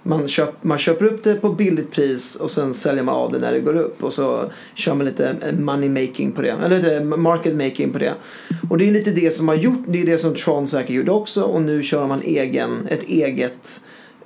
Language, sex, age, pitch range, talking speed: English, male, 30-49, 145-190 Hz, 235 wpm